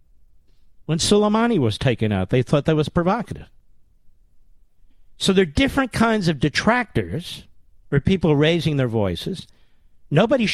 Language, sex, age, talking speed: English, male, 50-69, 130 wpm